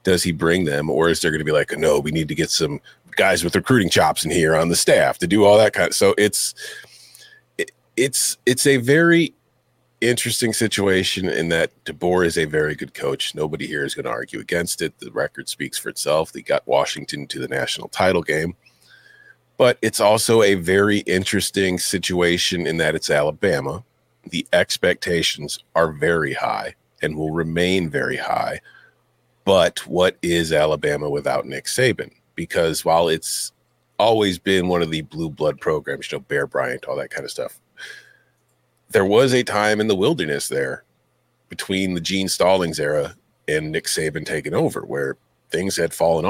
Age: 40-59